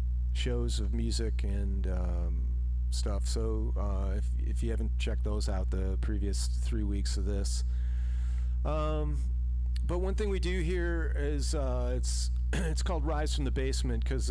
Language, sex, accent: English, male, American